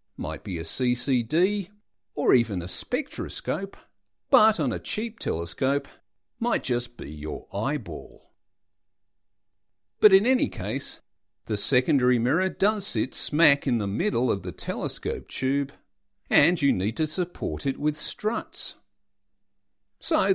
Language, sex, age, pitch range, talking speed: English, male, 50-69, 100-155 Hz, 130 wpm